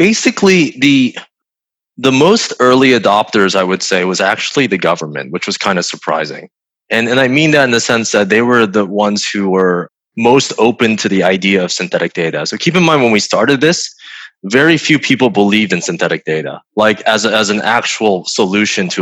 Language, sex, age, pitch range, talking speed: English, male, 20-39, 105-155 Hz, 200 wpm